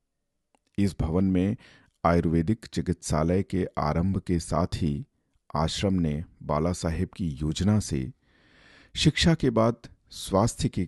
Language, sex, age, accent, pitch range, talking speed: Hindi, male, 50-69, native, 80-115 Hz, 120 wpm